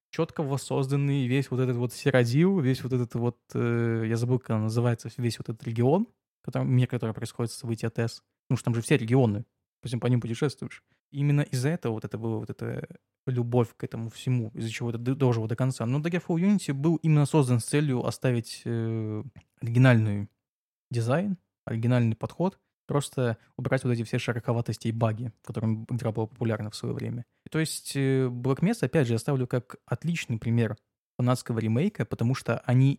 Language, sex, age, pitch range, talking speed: Russian, male, 20-39, 115-135 Hz, 185 wpm